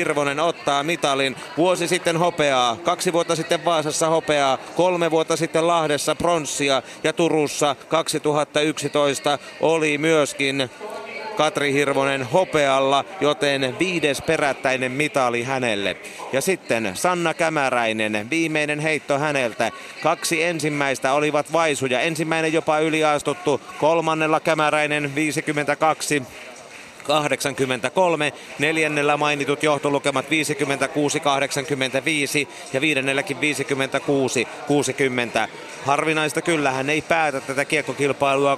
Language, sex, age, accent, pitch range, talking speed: Finnish, male, 30-49, native, 140-160 Hz, 95 wpm